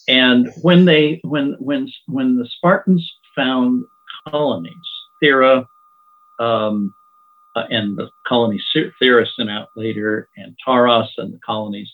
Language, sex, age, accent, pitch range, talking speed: English, male, 50-69, American, 120-170 Hz, 125 wpm